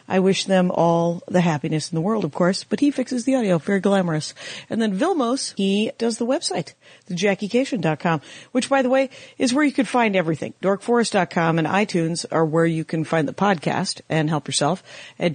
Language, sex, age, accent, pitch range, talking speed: English, female, 50-69, American, 155-200 Hz, 205 wpm